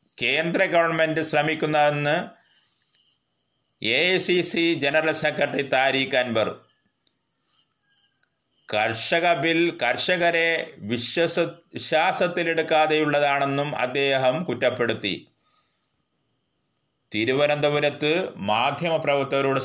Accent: native